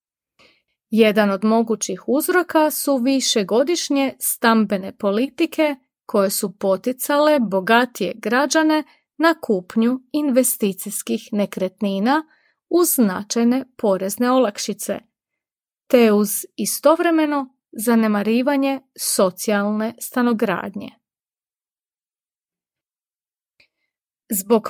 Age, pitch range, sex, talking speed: 30-49, 205-275 Hz, female, 70 wpm